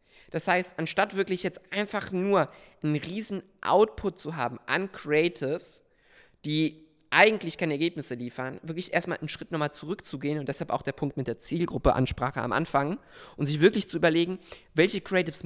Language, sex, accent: German, male, German